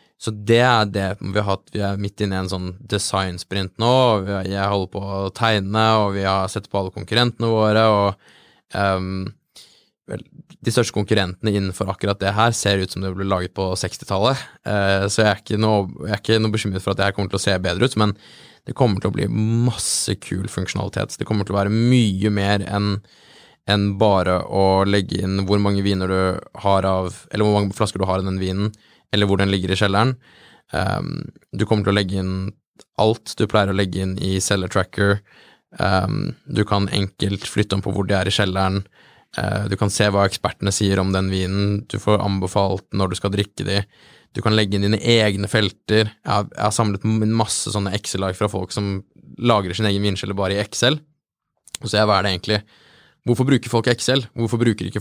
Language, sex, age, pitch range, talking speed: English, male, 20-39, 95-110 Hz, 200 wpm